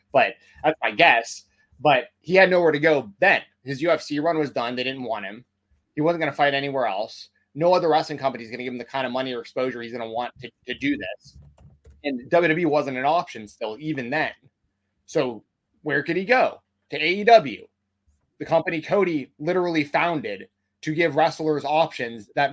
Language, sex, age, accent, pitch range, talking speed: English, male, 20-39, American, 120-170 Hz, 195 wpm